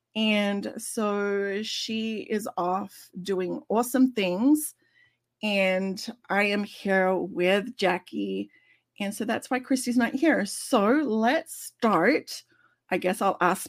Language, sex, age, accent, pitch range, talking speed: English, female, 30-49, American, 195-265 Hz, 125 wpm